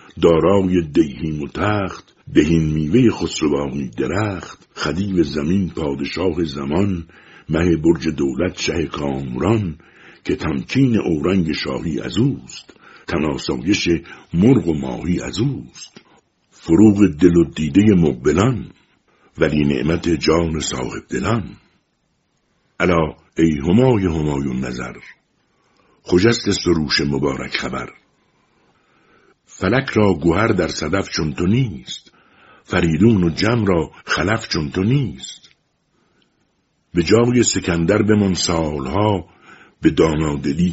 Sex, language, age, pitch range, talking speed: male, Persian, 60-79, 75-95 Hz, 110 wpm